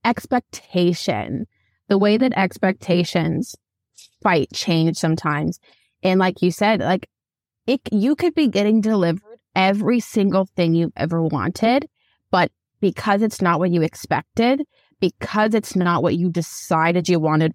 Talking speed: 135 wpm